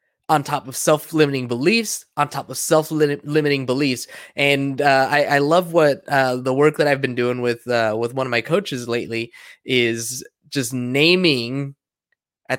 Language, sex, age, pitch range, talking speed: English, male, 20-39, 125-155 Hz, 165 wpm